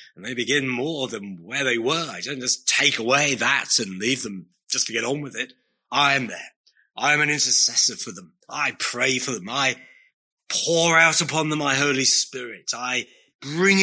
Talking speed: 200 wpm